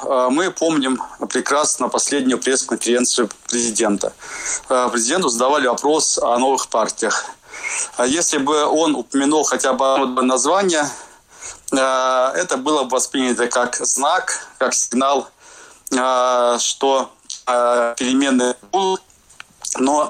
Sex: male